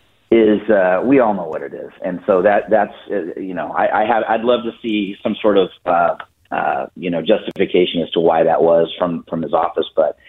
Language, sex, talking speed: English, male, 215 wpm